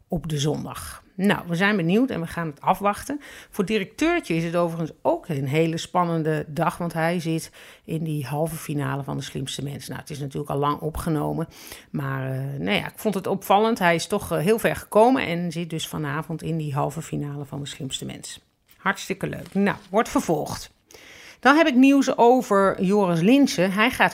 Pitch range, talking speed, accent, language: 155-195 Hz, 195 wpm, Dutch, Dutch